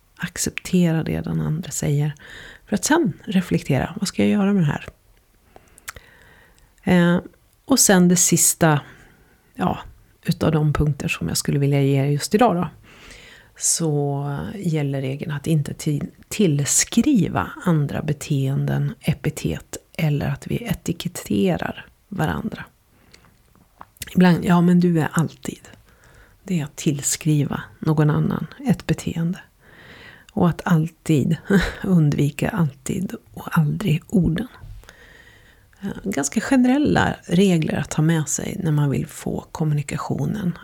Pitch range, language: 145-190 Hz, Swedish